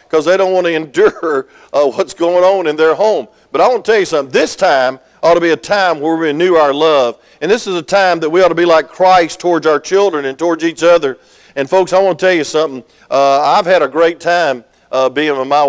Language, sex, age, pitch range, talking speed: English, male, 50-69, 140-180 Hz, 265 wpm